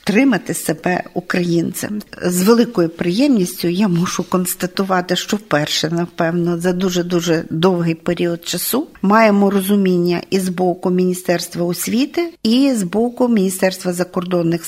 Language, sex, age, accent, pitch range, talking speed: Ukrainian, female, 50-69, native, 180-210 Hz, 125 wpm